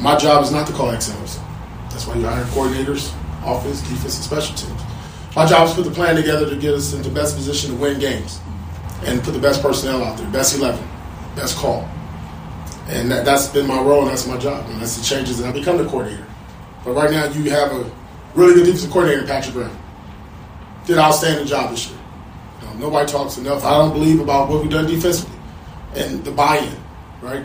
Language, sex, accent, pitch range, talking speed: English, male, American, 120-150 Hz, 225 wpm